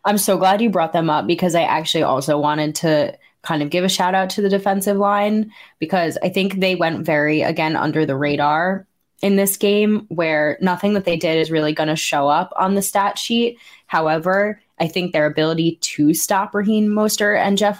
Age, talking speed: 20-39, 210 wpm